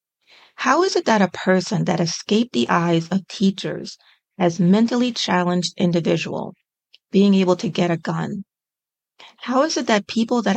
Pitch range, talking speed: 175-210 Hz, 160 wpm